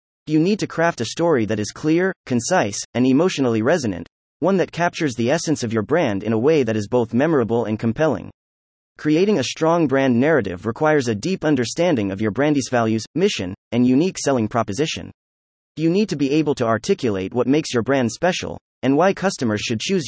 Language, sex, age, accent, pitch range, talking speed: English, male, 30-49, American, 110-160 Hz, 195 wpm